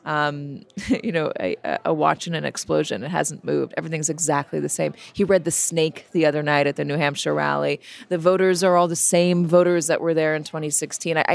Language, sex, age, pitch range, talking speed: English, female, 30-49, 155-195 Hz, 205 wpm